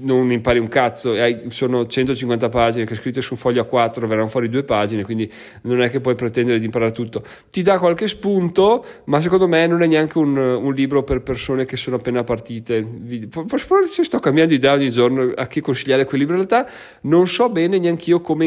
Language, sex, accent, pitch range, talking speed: Italian, male, native, 120-150 Hz, 210 wpm